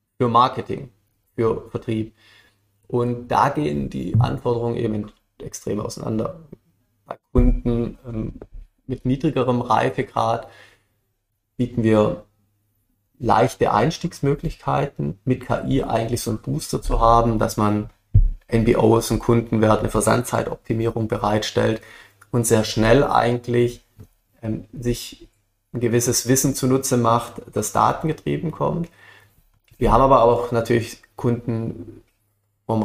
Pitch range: 105-120 Hz